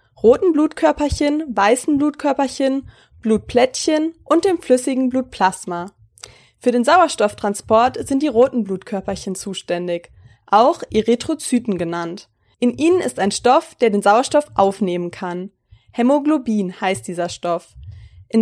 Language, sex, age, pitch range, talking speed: German, female, 20-39, 190-285 Hz, 115 wpm